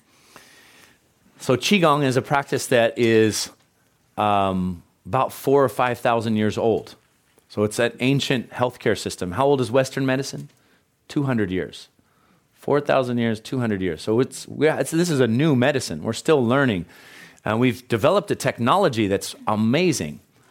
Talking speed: 145 wpm